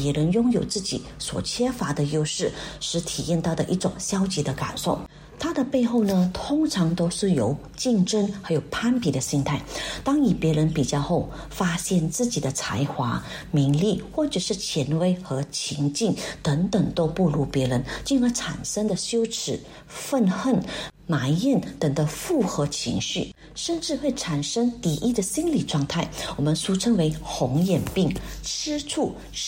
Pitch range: 155-210 Hz